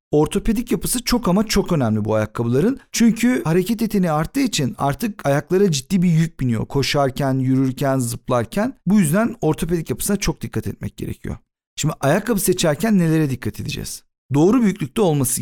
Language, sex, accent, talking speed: Turkish, male, native, 150 wpm